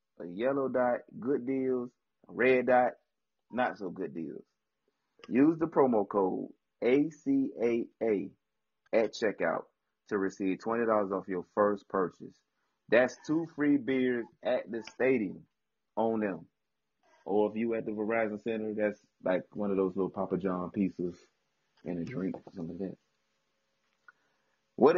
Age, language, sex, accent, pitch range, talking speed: 30-49, English, male, American, 95-120 Hz, 140 wpm